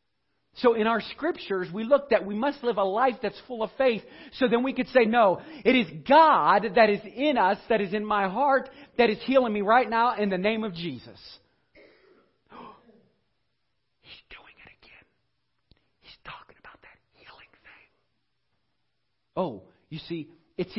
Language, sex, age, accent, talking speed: English, male, 50-69, American, 170 wpm